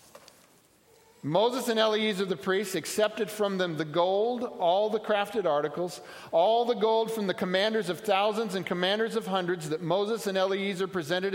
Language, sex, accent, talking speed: English, male, American, 165 wpm